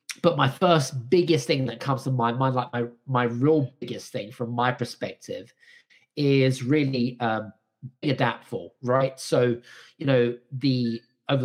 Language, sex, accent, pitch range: English, male, British, 120-145 Hz